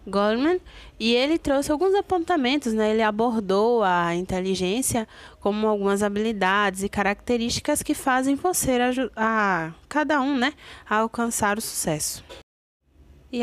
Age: 20-39